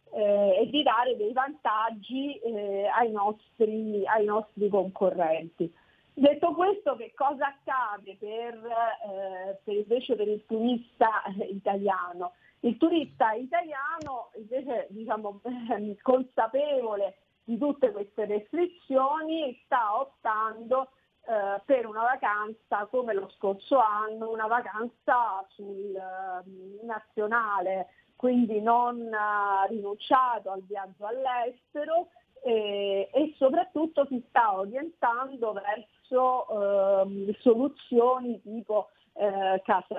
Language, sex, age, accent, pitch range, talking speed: Italian, female, 40-59, native, 200-250 Hz, 105 wpm